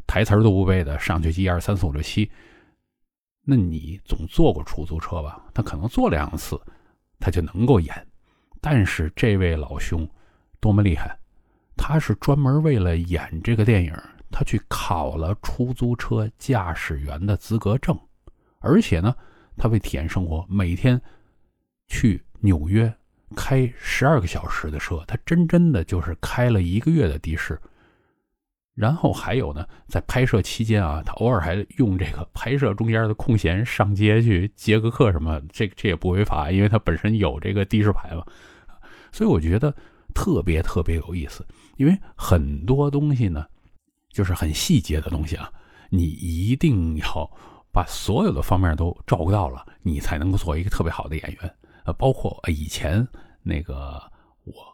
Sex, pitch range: male, 80-110 Hz